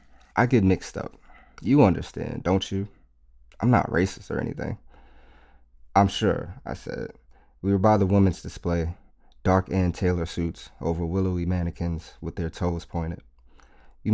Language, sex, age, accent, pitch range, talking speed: English, male, 30-49, American, 80-95 Hz, 150 wpm